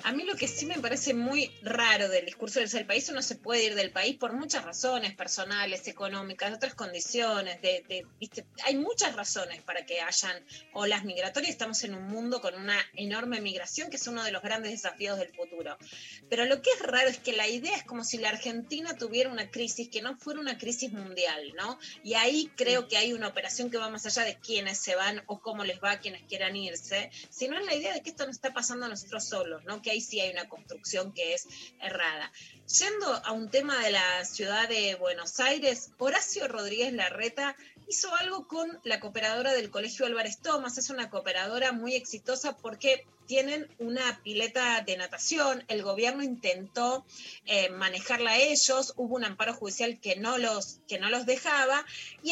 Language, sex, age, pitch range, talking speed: Spanish, female, 20-39, 205-270 Hz, 200 wpm